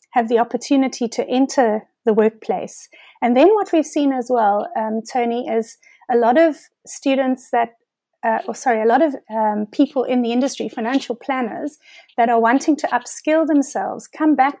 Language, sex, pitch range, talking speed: English, female, 225-265 Hz, 175 wpm